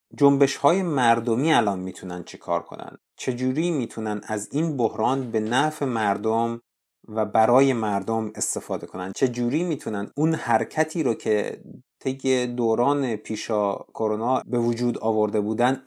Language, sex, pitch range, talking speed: Persian, male, 105-140 Hz, 130 wpm